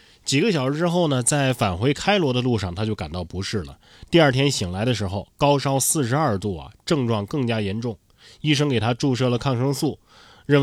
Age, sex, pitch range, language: 20-39, male, 100-140 Hz, Chinese